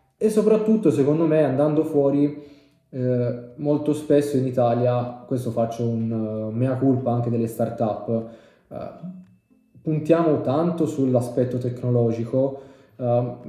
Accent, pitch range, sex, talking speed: native, 115-140 Hz, male, 105 wpm